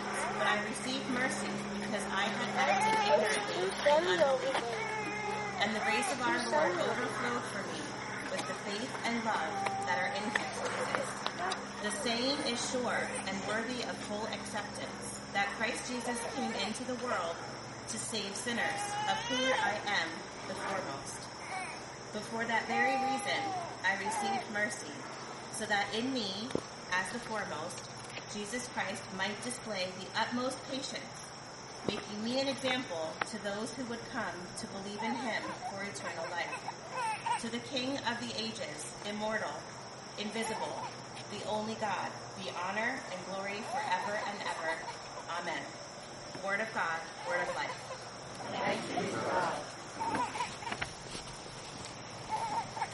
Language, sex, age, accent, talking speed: English, female, 30-49, American, 130 wpm